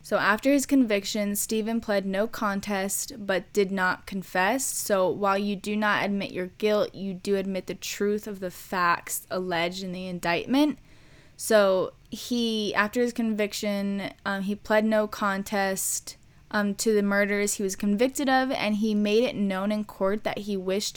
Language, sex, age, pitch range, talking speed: English, female, 10-29, 190-225 Hz, 170 wpm